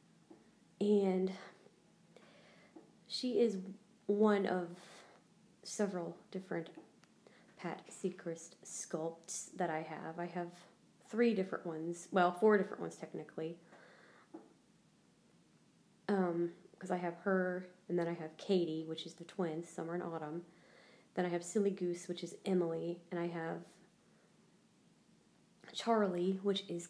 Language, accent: English, American